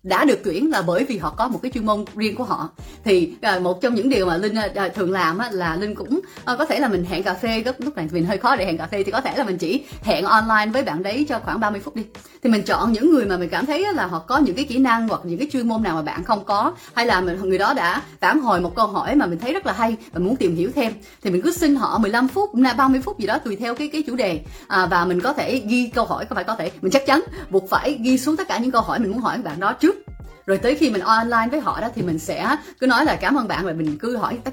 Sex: female